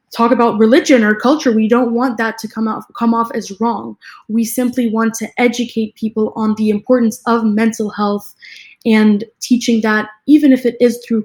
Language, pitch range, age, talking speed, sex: English, 210-240 Hz, 10-29, 190 wpm, female